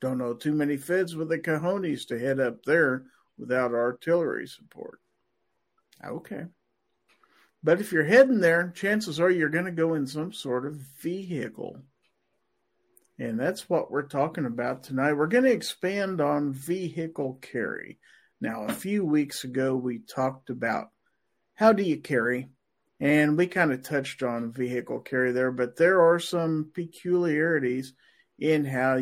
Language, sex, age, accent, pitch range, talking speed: English, male, 50-69, American, 130-165 Hz, 155 wpm